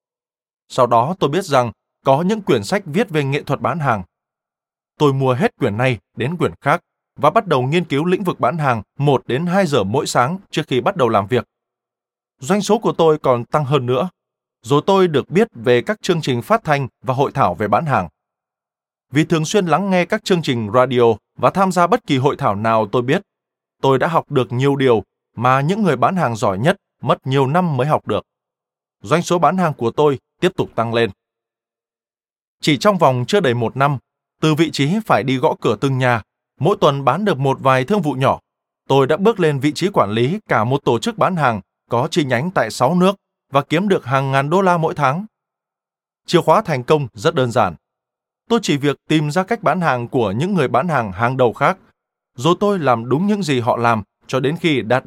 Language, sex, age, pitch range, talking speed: Vietnamese, male, 20-39, 125-175 Hz, 225 wpm